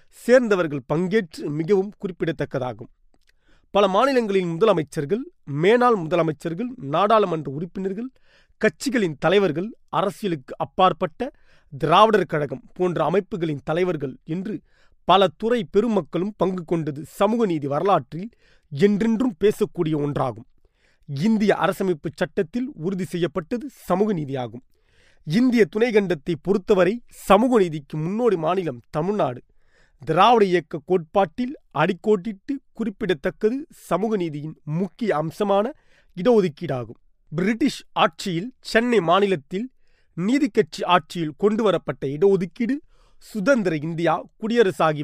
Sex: male